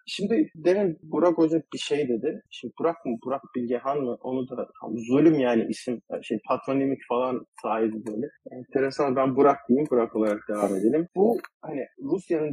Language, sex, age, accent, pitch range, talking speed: Turkish, male, 40-59, native, 120-160 Hz, 170 wpm